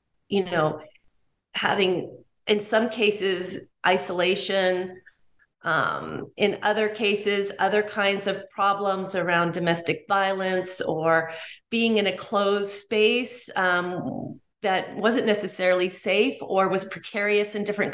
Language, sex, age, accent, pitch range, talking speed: English, female, 40-59, American, 180-220 Hz, 115 wpm